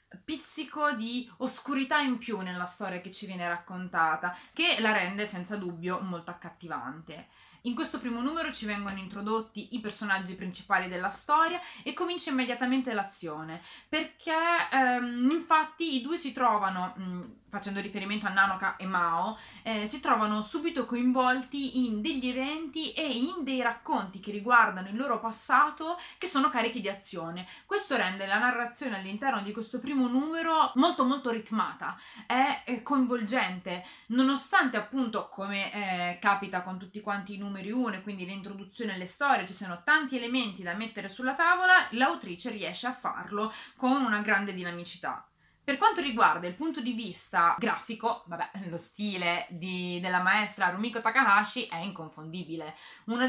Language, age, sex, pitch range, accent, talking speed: Italian, 20-39, female, 185-255 Hz, native, 150 wpm